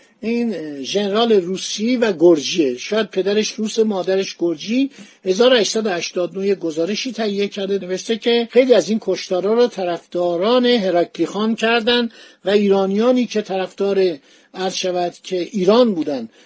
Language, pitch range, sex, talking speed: Persian, 175-230 Hz, male, 120 wpm